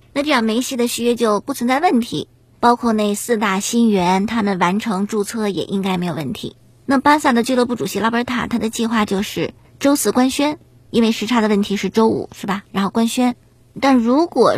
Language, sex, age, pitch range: Chinese, male, 50-69, 195-240 Hz